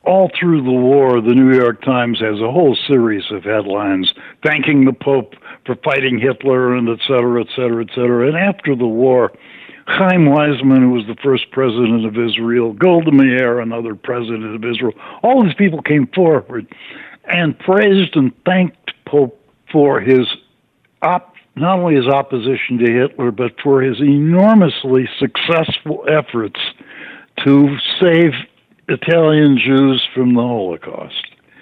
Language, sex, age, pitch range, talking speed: English, male, 60-79, 125-175 Hz, 145 wpm